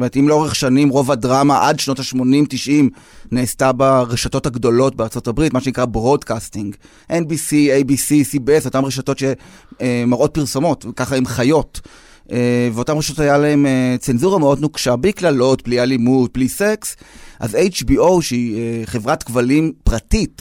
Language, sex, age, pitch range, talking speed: Hebrew, male, 30-49, 125-150 Hz, 130 wpm